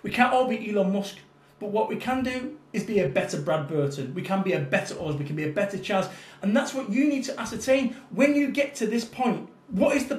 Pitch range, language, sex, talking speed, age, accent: 205-275 Hz, English, male, 265 wpm, 30-49, British